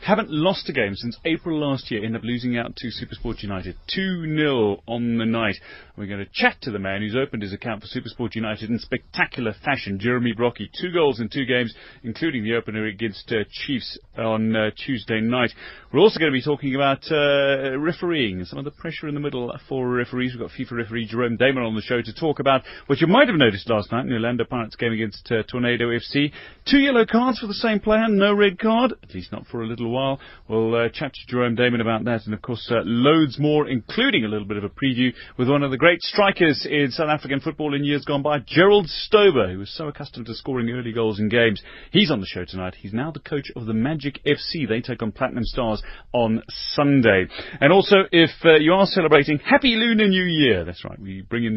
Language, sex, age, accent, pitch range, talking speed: English, male, 30-49, British, 110-145 Hz, 230 wpm